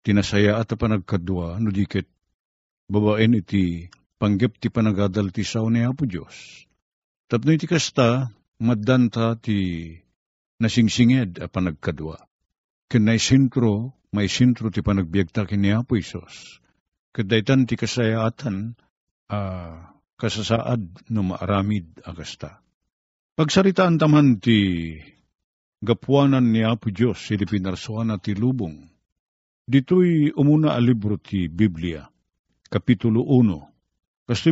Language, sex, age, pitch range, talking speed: Filipino, male, 50-69, 100-130 Hz, 100 wpm